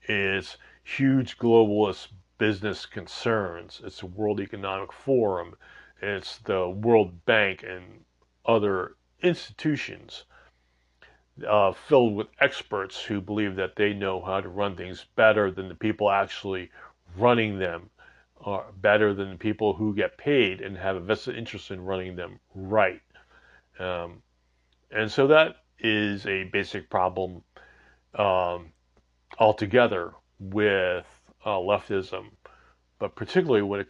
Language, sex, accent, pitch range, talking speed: English, male, American, 95-110 Hz, 125 wpm